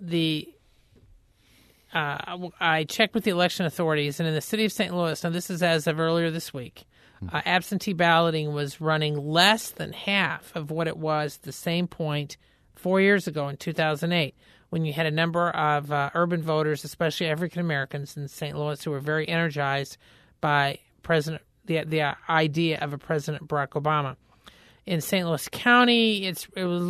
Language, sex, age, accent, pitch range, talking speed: English, male, 40-59, American, 150-180 Hz, 175 wpm